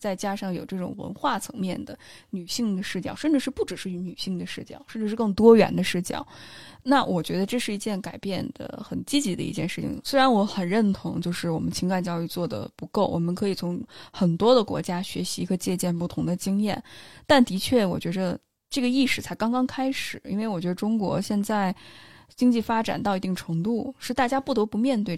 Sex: female